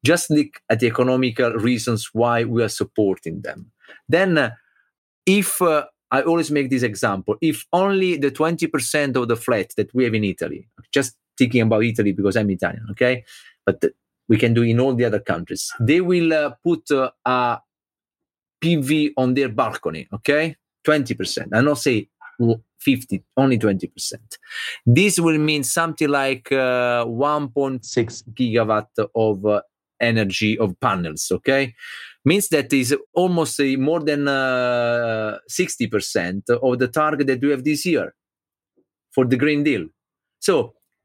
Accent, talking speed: Italian, 155 wpm